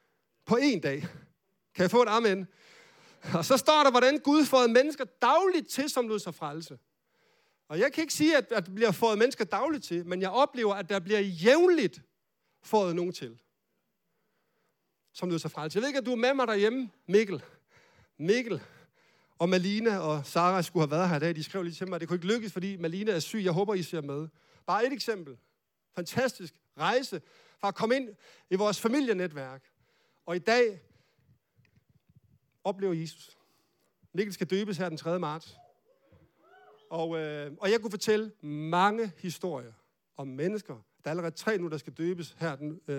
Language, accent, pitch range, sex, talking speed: Danish, native, 165-245 Hz, male, 185 wpm